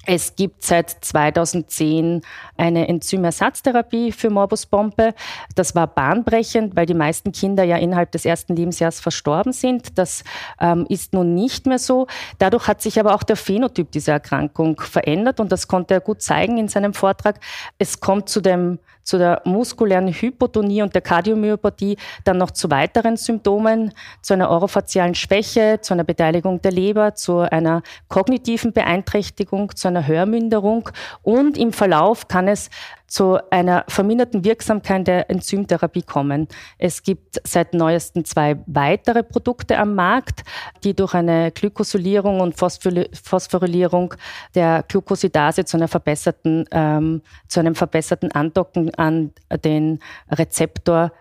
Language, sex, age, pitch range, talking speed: German, female, 40-59, 170-210 Hz, 140 wpm